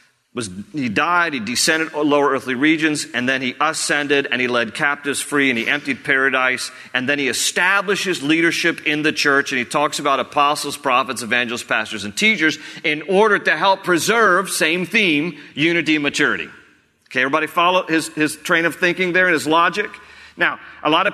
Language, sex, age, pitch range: English, male, 40-59, 130-160 Hz